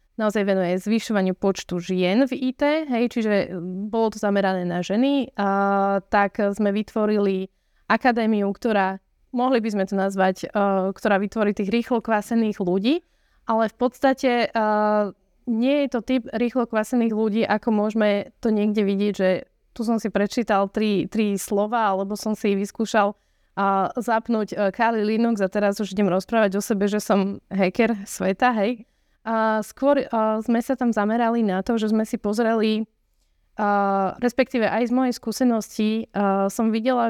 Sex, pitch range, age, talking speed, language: female, 200-230 Hz, 20-39, 155 wpm, Slovak